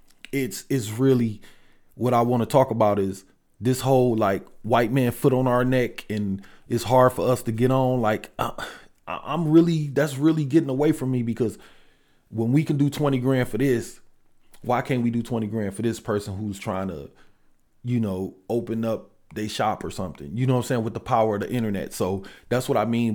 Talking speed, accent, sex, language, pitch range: 215 wpm, American, male, English, 115-155 Hz